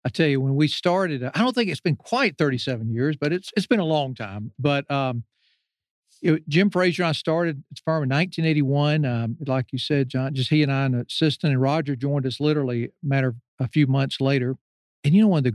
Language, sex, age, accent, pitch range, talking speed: English, male, 50-69, American, 130-160 Hz, 245 wpm